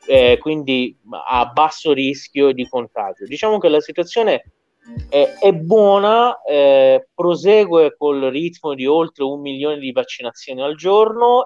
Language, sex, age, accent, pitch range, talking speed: Italian, male, 30-49, native, 135-205 Hz, 135 wpm